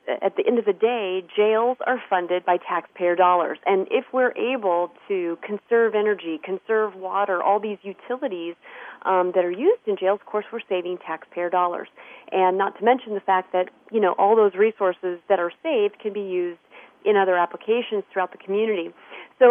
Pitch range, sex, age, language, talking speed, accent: 185-250 Hz, female, 40-59, English, 190 wpm, American